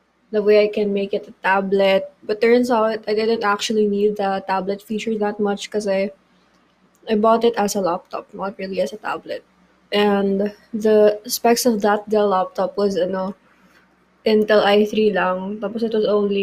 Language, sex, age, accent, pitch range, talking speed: English, female, 20-39, Filipino, 200-225 Hz, 180 wpm